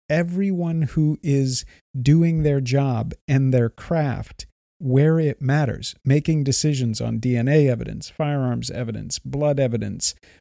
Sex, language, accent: male, English, American